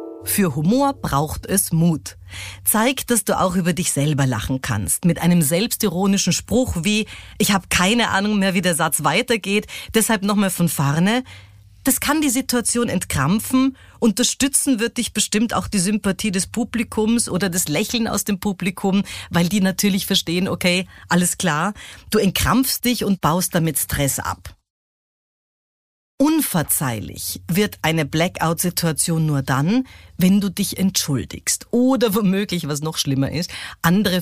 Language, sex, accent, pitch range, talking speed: German, female, German, 150-225 Hz, 145 wpm